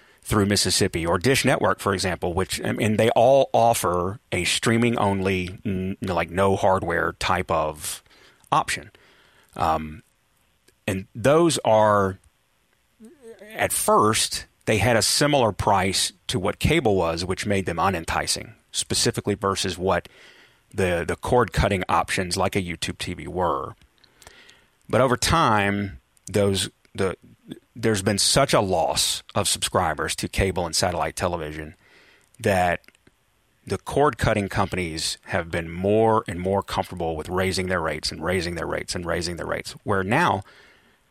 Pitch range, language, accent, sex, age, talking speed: 90-110 Hz, English, American, male, 30-49, 140 wpm